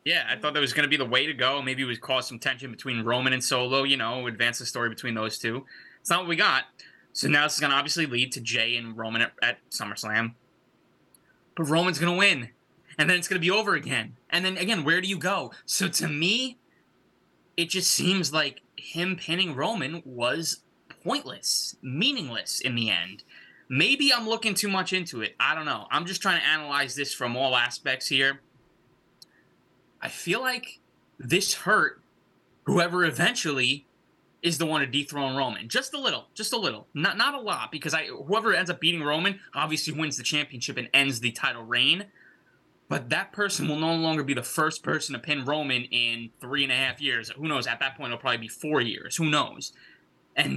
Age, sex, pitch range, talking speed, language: 20-39, male, 125-165 Hz, 210 wpm, English